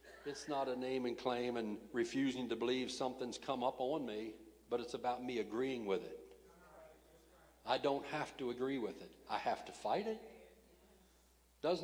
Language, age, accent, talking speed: English, 60-79, American, 175 wpm